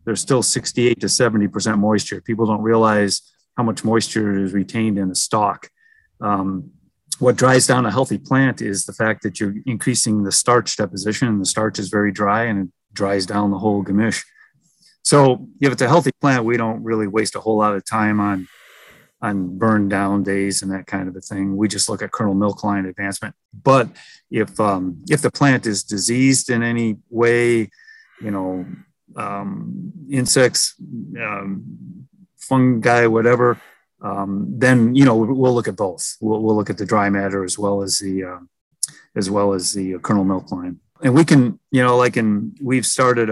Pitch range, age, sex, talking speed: 100-125 Hz, 30-49, male, 185 wpm